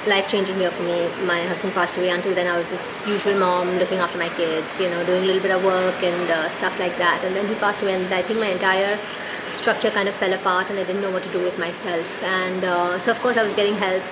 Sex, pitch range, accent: female, 180-205 Hz, Indian